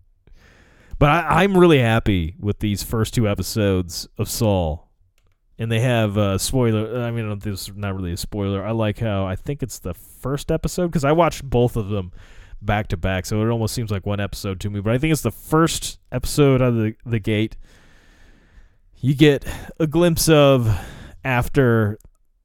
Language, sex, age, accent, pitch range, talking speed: English, male, 30-49, American, 95-135 Hz, 190 wpm